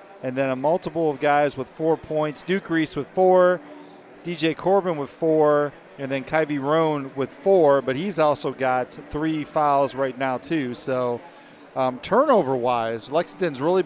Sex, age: male, 40-59